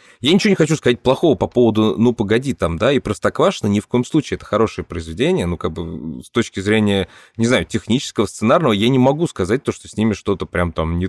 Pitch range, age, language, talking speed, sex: 90-115 Hz, 20-39, Russian, 235 wpm, male